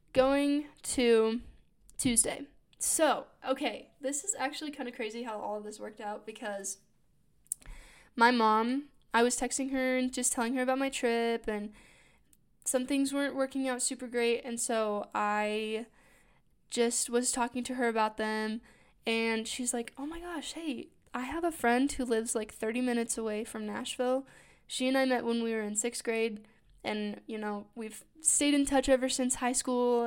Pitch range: 225-265 Hz